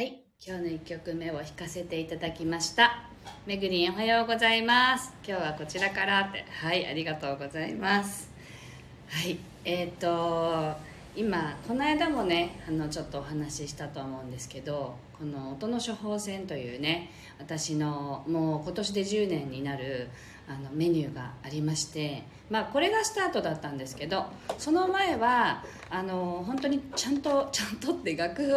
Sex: female